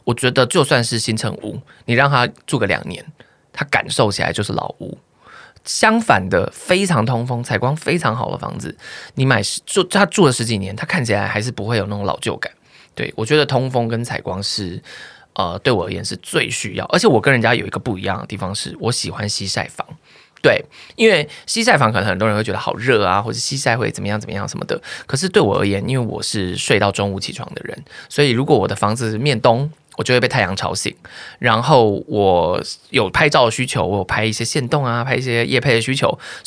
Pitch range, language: 105-135 Hz, Chinese